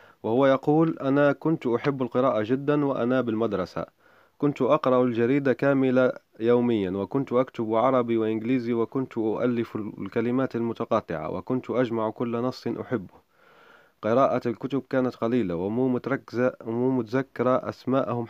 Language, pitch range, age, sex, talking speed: Arabic, 115-135 Hz, 30-49, male, 120 wpm